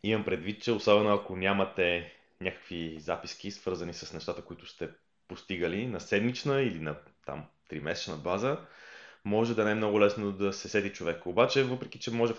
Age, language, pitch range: 20-39, Bulgarian, 90-115 Hz